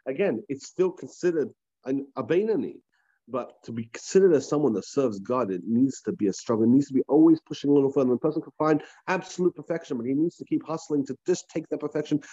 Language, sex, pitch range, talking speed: English, male, 130-175 Hz, 230 wpm